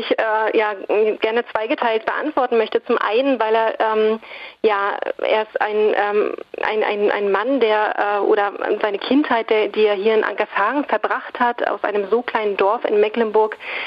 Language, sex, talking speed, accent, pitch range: German, female, 175 wpm, German, 215-295 Hz